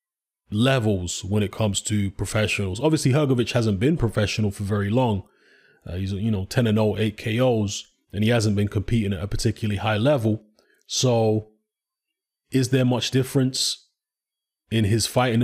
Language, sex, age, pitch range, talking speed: English, male, 20-39, 105-125 Hz, 160 wpm